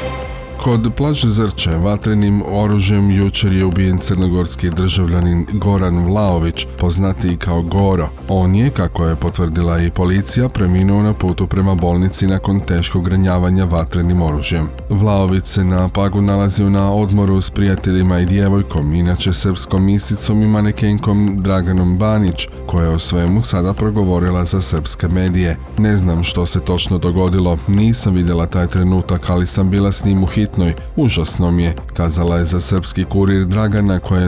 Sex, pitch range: male, 90-100 Hz